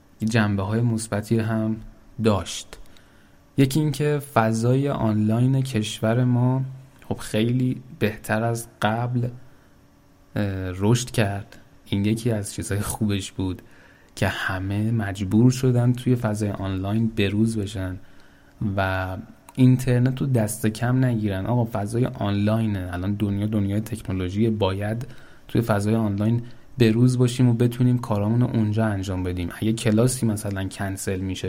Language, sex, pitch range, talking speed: Persian, male, 95-120 Hz, 120 wpm